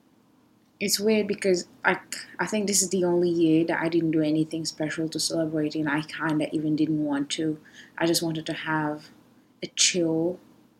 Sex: female